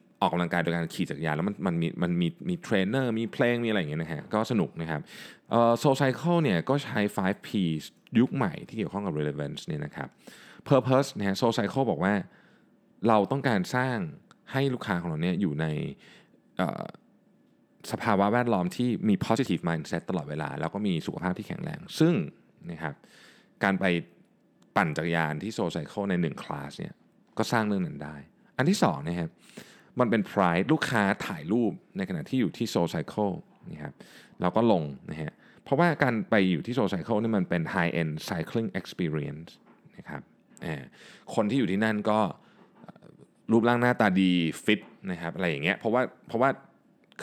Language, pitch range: Thai, 85-140 Hz